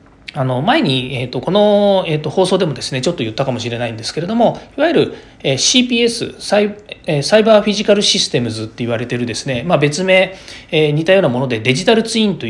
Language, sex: Japanese, male